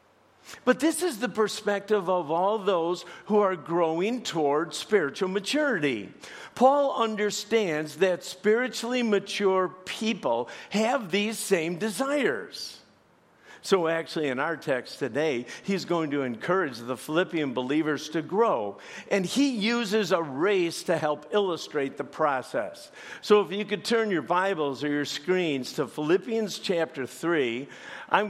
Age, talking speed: 50-69, 135 wpm